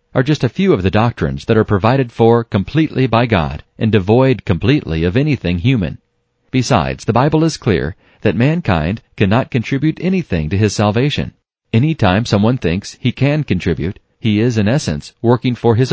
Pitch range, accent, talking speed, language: 95-130 Hz, American, 175 wpm, English